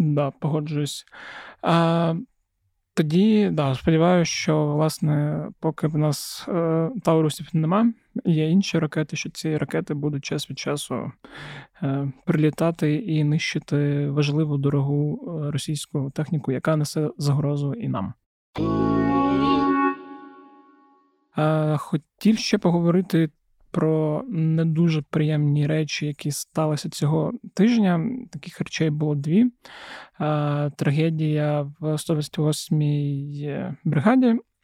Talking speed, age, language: 95 wpm, 20-39, Ukrainian